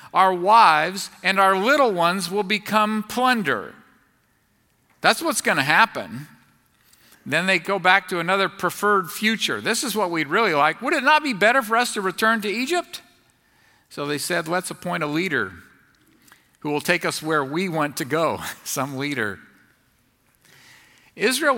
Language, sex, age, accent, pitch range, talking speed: English, male, 50-69, American, 150-205 Hz, 160 wpm